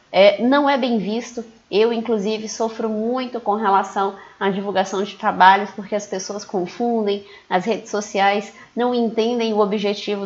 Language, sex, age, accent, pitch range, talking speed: Portuguese, female, 20-39, Brazilian, 200-235 Hz, 150 wpm